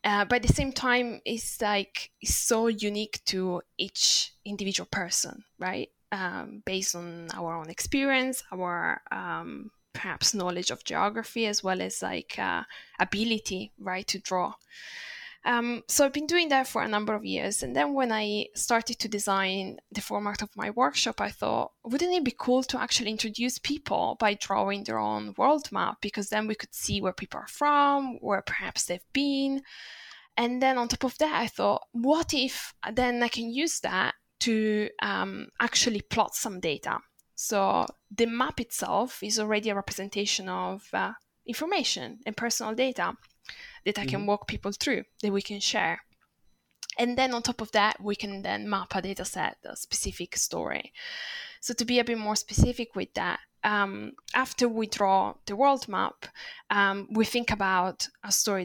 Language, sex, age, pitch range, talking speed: English, female, 10-29, 190-245 Hz, 175 wpm